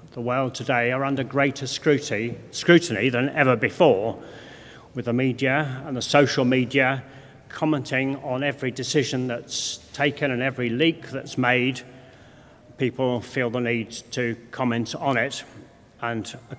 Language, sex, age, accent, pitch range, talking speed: English, male, 40-59, British, 120-140 Hz, 135 wpm